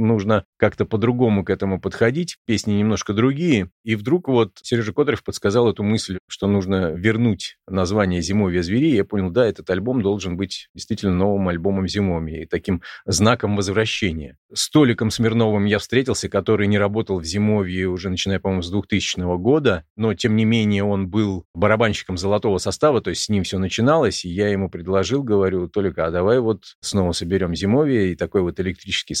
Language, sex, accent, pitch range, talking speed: Russian, male, native, 95-115 Hz, 175 wpm